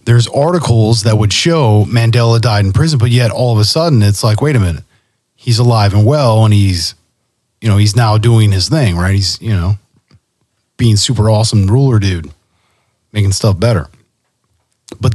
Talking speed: 180 wpm